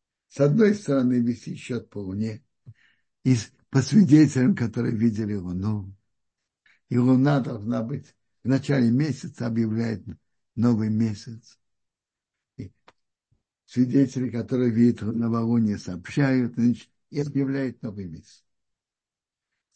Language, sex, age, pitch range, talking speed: Russian, male, 60-79, 120-170 Hz, 105 wpm